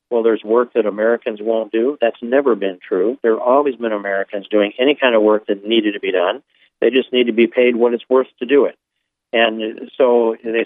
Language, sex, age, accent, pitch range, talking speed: English, male, 50-69, American, 105-120 Hz, 230 wpm